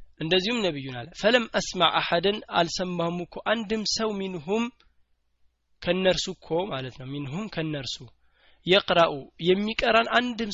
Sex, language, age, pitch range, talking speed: male, Amharic, 20-39, 145-185 Hz, 130 wpm